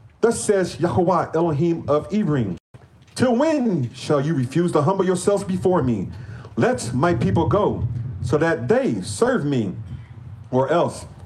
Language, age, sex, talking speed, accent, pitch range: English, 40-59, male, 145 wpm, American, 115-185 Hz